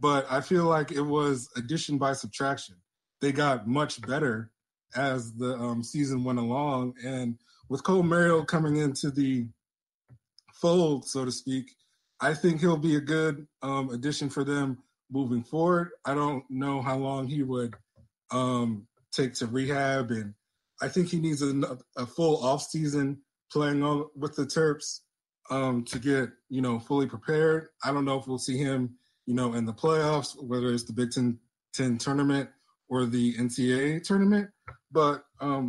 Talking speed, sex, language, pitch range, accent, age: 165 wpm, male, English, 125-150 Hz, American, 20-39